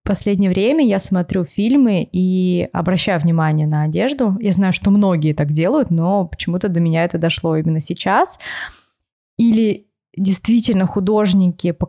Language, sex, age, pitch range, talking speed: Russian, female, 20-39, 170-205 Hz, 145 wpm